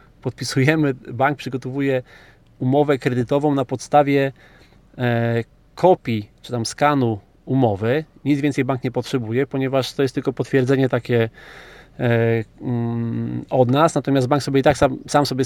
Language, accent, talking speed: Polish, native, 125 wpm